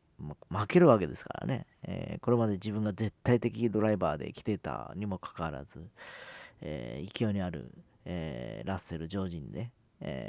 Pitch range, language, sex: 90-115 Hz, Japanese, male